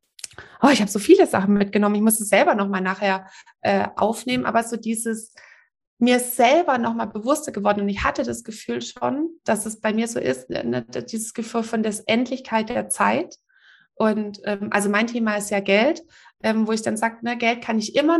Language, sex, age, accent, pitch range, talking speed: German, female, 20-39, German, 205-245 Hz, 200 wpm